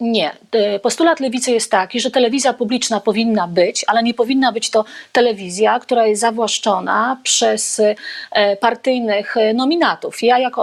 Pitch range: 215-260 Hz